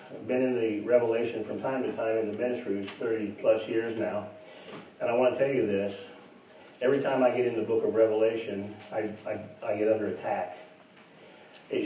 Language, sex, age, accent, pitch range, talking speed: English, male, 50-69, American, 110-145 Hz, 200 wpm